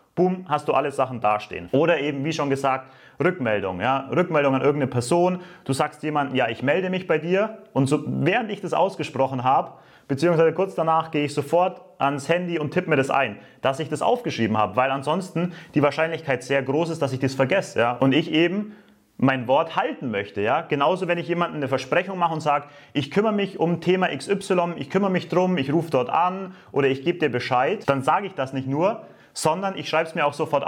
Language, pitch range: English, 140-175 Hz